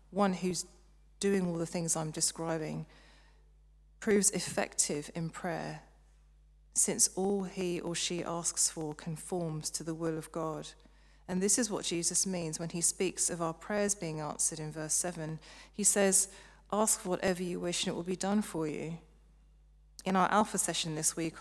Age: 40-59